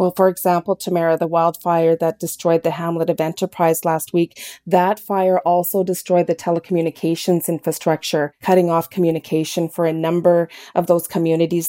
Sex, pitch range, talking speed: female, 170-200 Hz, 155 wpm